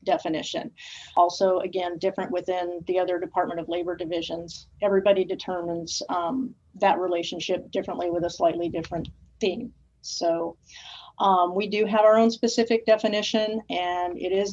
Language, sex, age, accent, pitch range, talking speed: English, female, 40-59, American, 175-210 Hz, 140 wpm